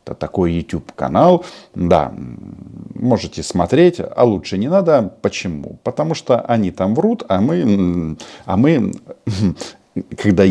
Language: Russian